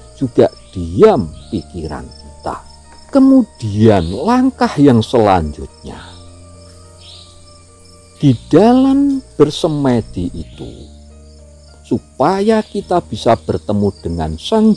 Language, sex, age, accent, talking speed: Indonesian, male, 50-69, native, 75 wpm